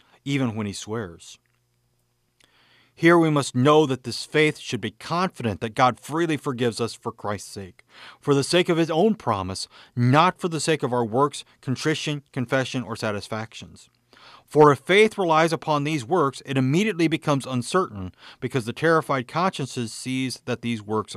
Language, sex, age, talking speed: English, male, 40-59, 165 wpm